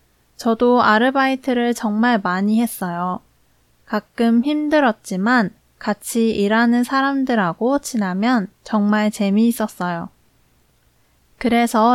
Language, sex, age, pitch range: Korean, female, 20-39, 205-265 Hz